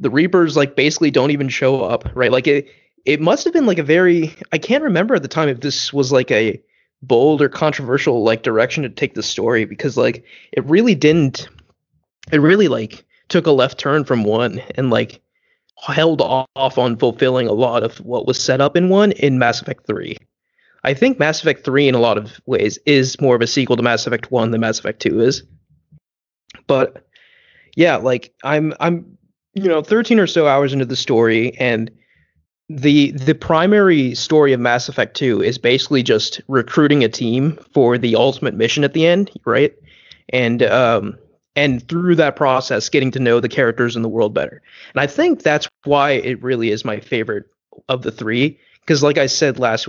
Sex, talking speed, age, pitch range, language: male, 200 wpm, 20-39, 125-160 Hz, English